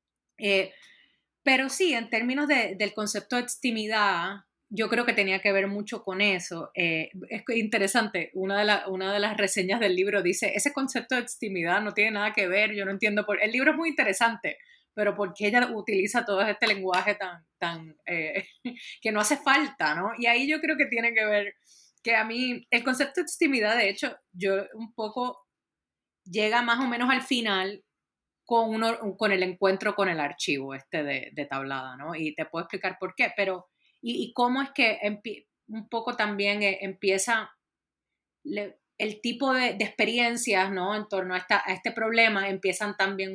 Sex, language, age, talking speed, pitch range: female, Spanish, 30-49, 190 wpm, 190-235 Hz